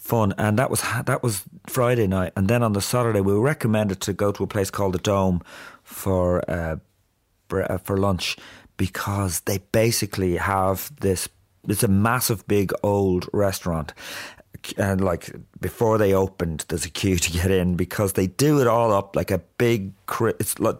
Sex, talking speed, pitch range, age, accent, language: male, 175 wpm, 95-125 Hz, 30-49, British, English